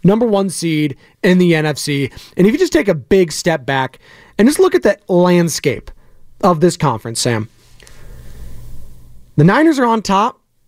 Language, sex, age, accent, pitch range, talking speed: English, male, 30-49, American, 145-200 Hz, 170 wpm